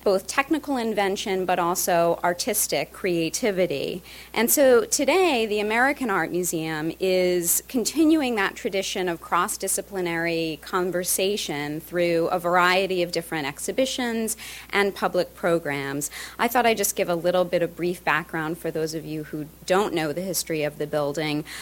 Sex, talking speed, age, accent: female, 145 wpm, 40-59, American